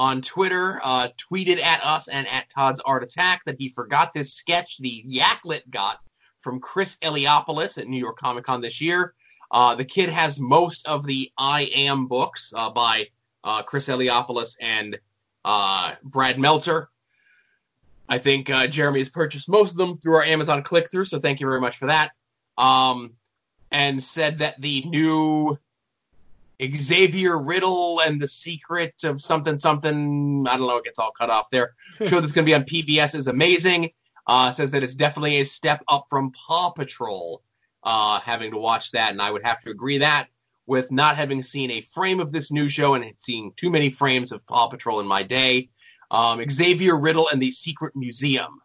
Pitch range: 125-155 Hz